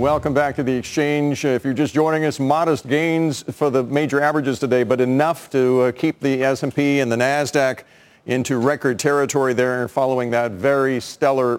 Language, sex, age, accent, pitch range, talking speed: English, male, 50-69, American, 130-155 Hz, 175 wpm